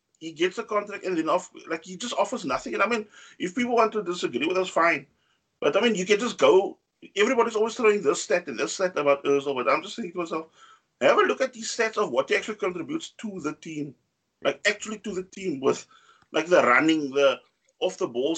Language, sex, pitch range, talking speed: English, male, 150-235 Hz, 240 wpm